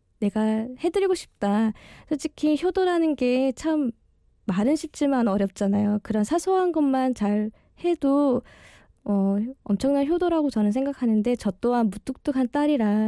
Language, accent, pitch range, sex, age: Korean, native, 205-275 Hz, female, 20-39